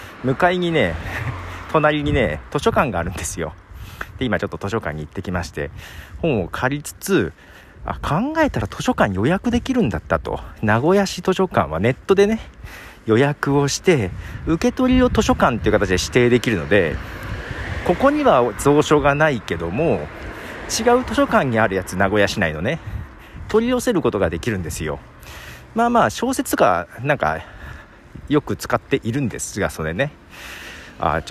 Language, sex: Japanese, male